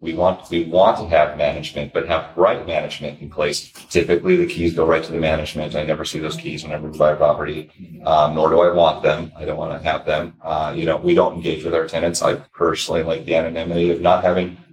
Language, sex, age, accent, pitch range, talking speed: English, male, 30-49, American, 80-95 Hz, 245 wpm